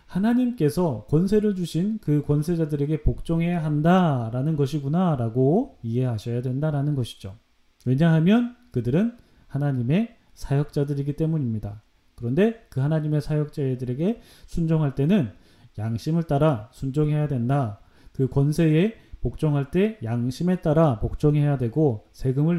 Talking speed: 95 wpm